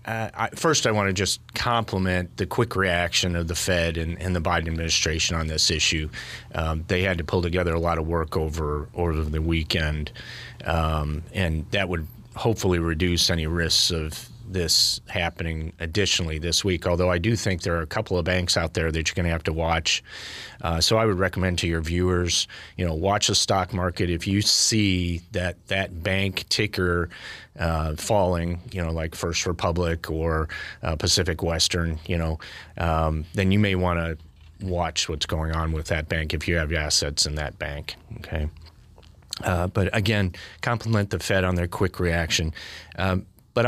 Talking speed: 185 wpm